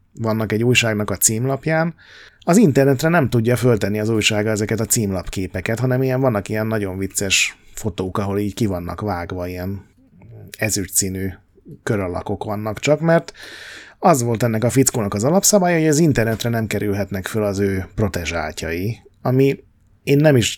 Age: 30-49